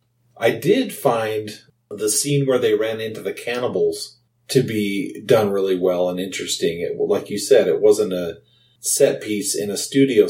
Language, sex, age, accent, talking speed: English, male, 40-59, American, 175 wpm